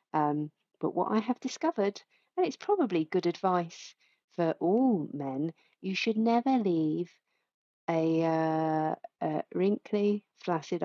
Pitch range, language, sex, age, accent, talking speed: 160-215 Hz, English, female, 40-59, British, 125 wpm